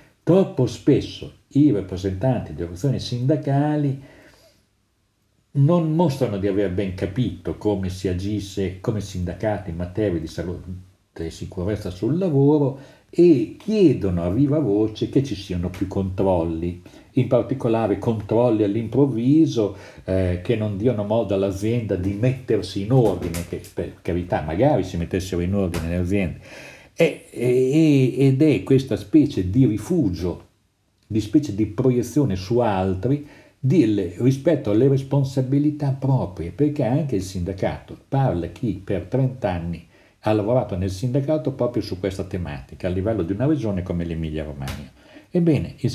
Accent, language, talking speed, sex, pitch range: native, Italian, 135 wpm, male, 95-130 Hz